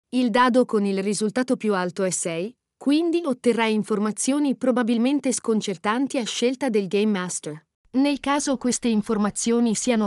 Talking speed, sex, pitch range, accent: 145 wpm, female, 205-265 Hz, native